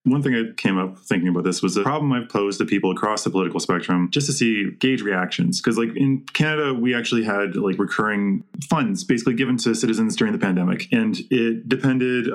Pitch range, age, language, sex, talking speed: 105-135 Hz, 20-39, English, male, 215 wpm